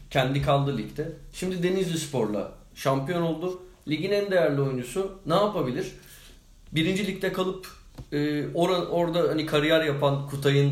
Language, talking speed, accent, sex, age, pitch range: Turkish, 125 wpm, native, male, 40-59, 130-165 Hz